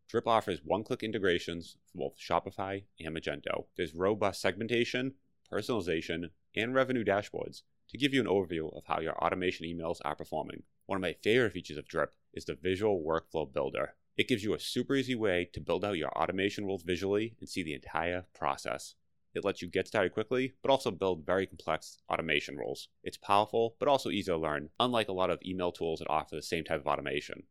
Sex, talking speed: male, 200 wpm